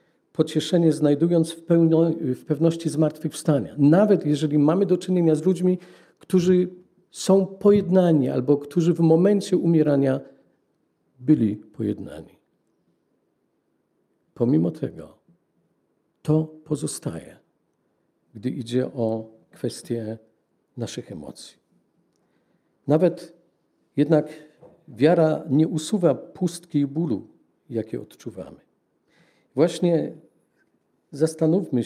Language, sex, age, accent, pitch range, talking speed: Polish, male, 50-69, native, 140-175 Hz, 85 wpm